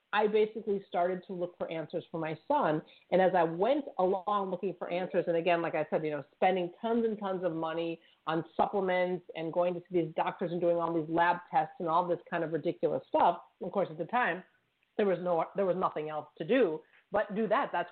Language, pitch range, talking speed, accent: English, 165-205 Hz, 235 wpm, American